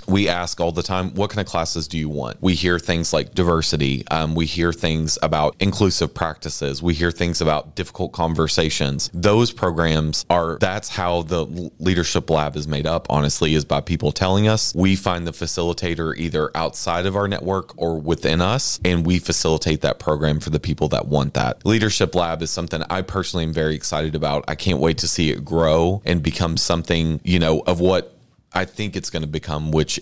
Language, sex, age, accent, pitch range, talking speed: English, male, 30-49, American, 80-90 Hz, 200 wpm